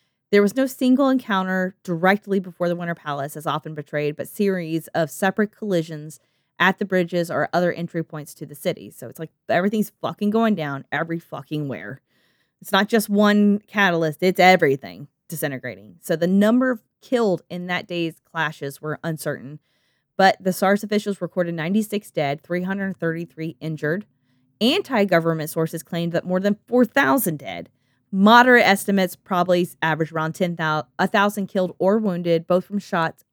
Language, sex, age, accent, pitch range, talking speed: English, female, 20-39, American, 155-200 Hz, 155 wpm